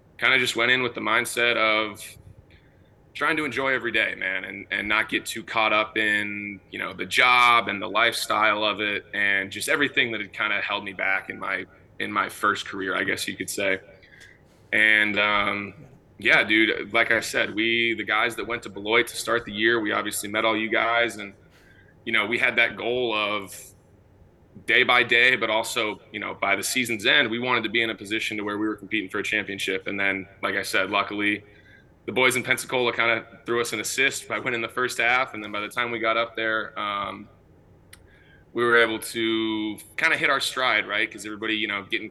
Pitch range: 100-115 Hz